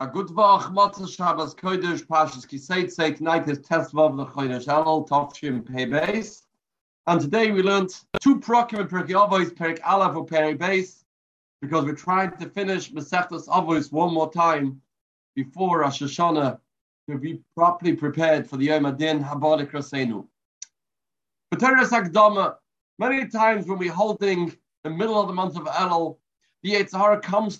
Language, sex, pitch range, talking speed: English, male, 150-190 Hz, 120 wpm